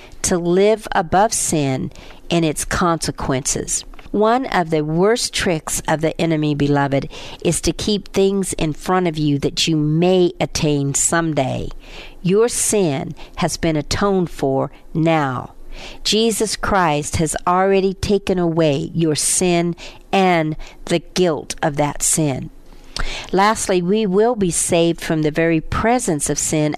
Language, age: English, 50-69